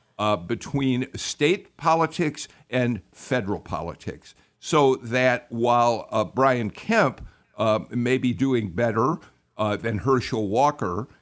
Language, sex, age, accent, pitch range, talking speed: English, male, 50-69, American, 115-150 Hz, 120 wpm